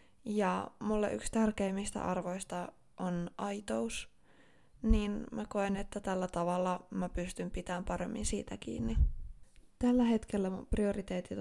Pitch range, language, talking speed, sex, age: 170-205 Hz, Finnish, 120 wpm, female, 20-39